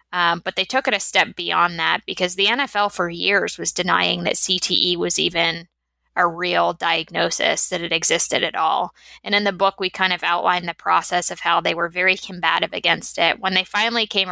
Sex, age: female, 20-39